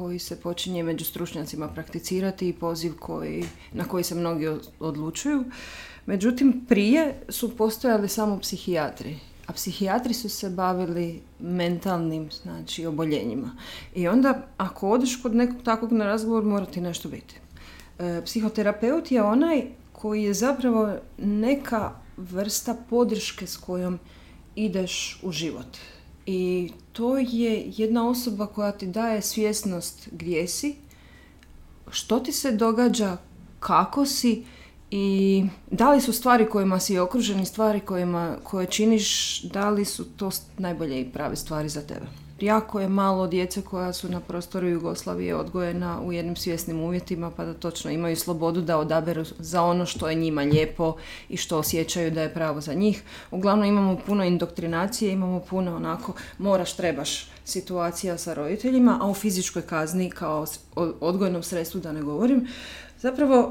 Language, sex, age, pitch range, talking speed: Croatian, female, 40-59, 170-225 Hz, 145 wpm